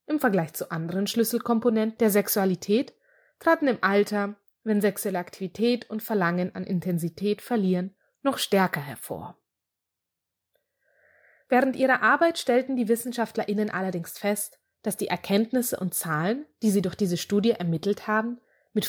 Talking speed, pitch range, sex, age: 135 wpm, 180-235 Hz, female, 20-39